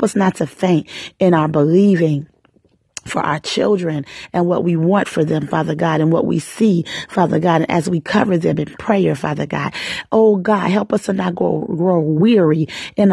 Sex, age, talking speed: female, 40-59, 195 wpm